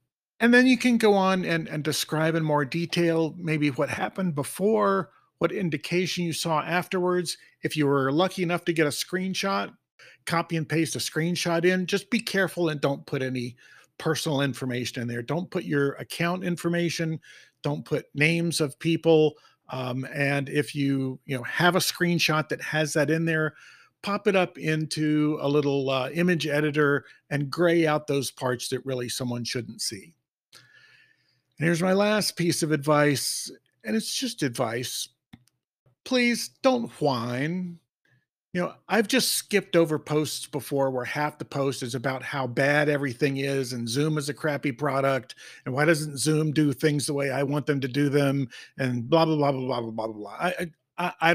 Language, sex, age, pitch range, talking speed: English, male, 50-69, 140-175 Hz, 180 wpm